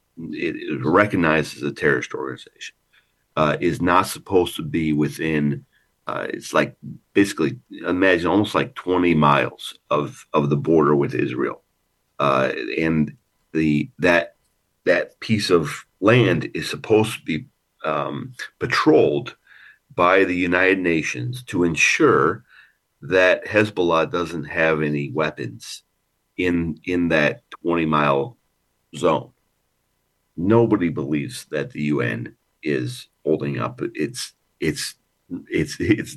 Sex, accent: male, American